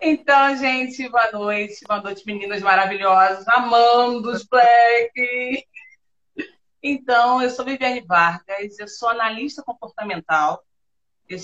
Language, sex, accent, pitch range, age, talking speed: Portuguese, female, Brazilian, 210-270 Hz, 40-59, 110 wpm